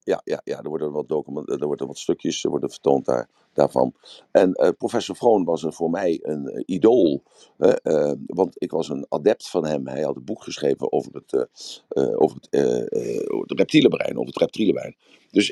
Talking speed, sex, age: 210 wpm, male, 50-69